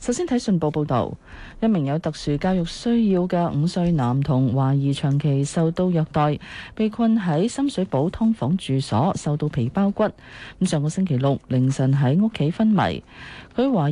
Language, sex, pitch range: Chinese, female, 130-185 Hz